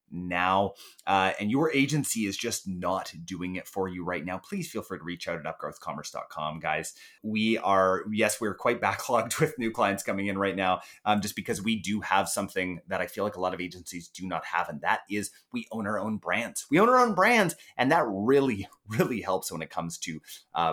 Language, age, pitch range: English, 30-49, 90-130 Hz